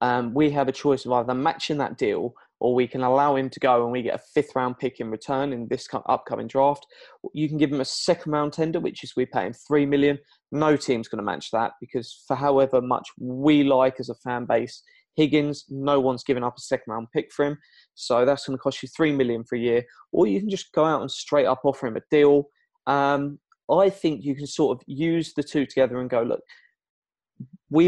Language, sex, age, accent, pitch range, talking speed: English, male, 20-39, British, 125-155 Hz, 240 wpm